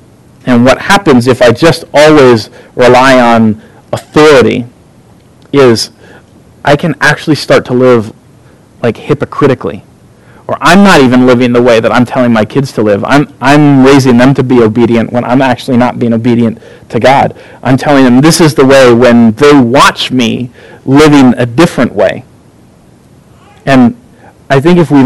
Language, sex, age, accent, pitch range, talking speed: English, male, 40-59, American, 120-145 Hz, 165 wpm